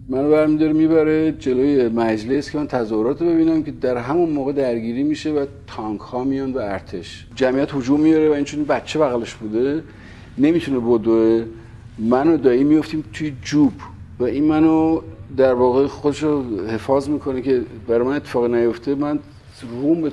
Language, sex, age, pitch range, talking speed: Persian, male, 50-69, 115-150 Hz, 160 wpm